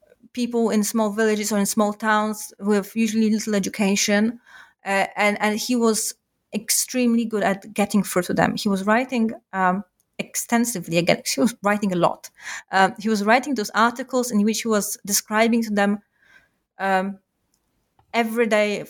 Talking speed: 160 wpm